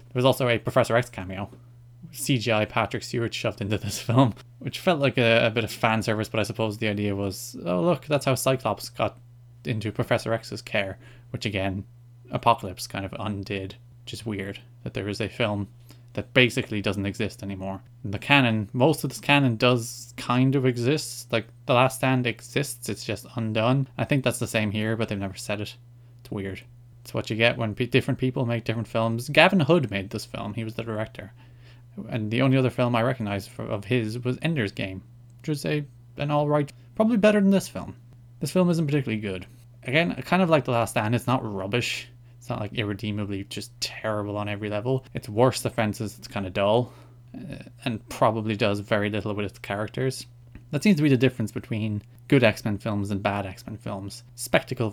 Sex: male